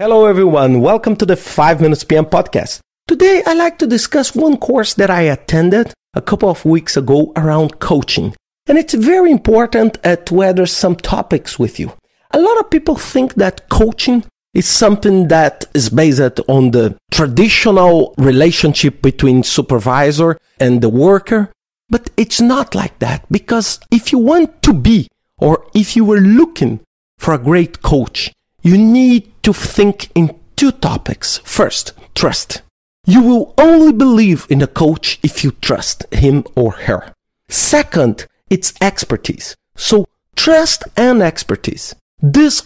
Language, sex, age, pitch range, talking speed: English, male, 40-59, 160-260 Hz, 150 wpm